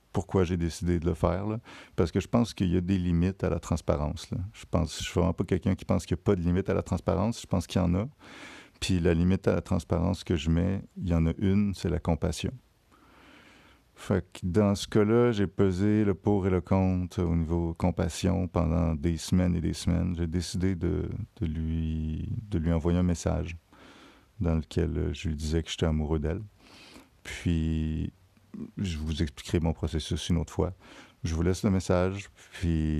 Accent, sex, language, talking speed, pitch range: French, male, French, 210 wpm, 80-95 Hz